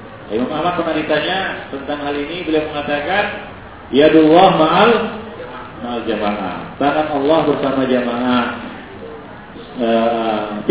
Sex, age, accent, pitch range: male, 40-59, Indonesian, 120-175 Hz